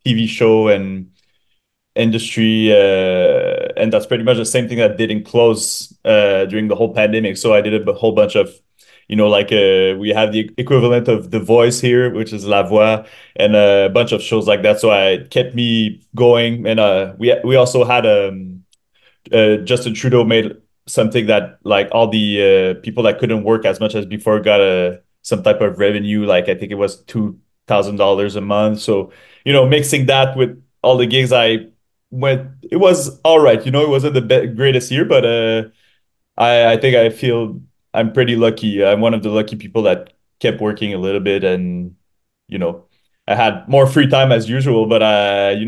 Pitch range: 105-125 Hz